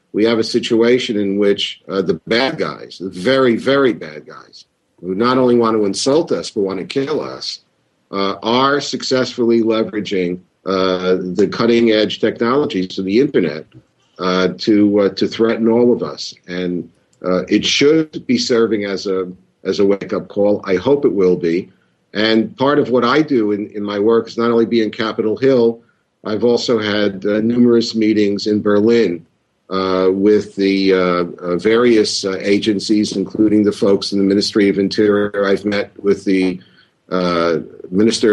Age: 50-69